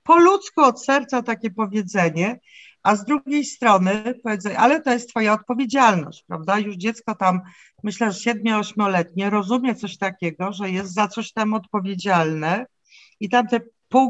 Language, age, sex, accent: Polish, 50-69, female, native